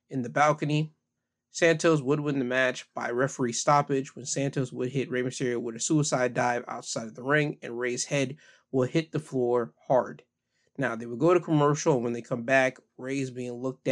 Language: English